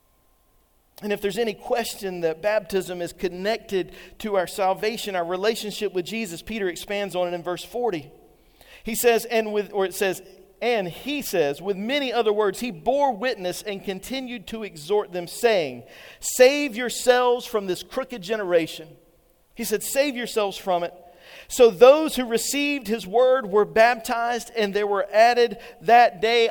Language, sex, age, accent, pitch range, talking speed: English, male, 40-59, American, 175-225 Hz, 165 wpm